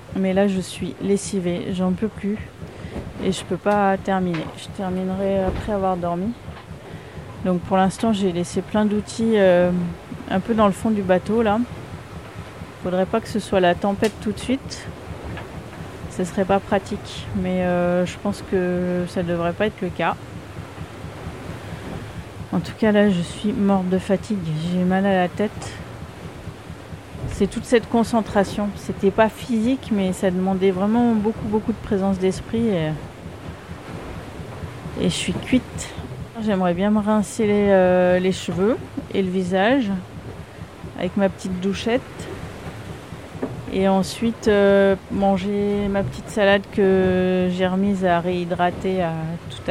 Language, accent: French, French